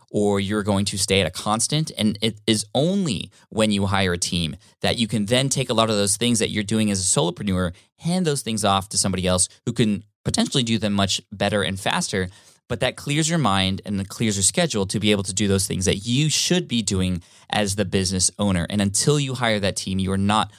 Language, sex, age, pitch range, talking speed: English, male, 20-39, 95-115 Hz, 245 wpm